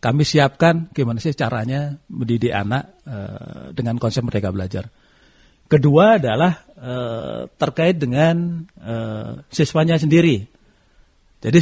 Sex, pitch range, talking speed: male, 120-165 Hz, 110 wpm